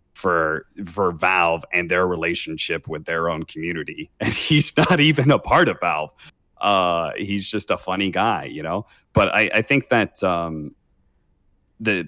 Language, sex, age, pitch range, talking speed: English, male, 30-49, 85-105 Hz, 165 wpm